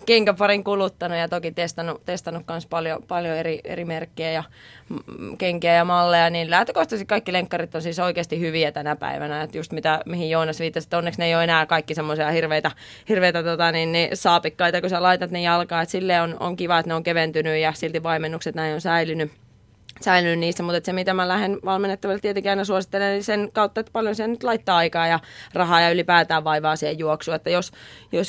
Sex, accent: female, native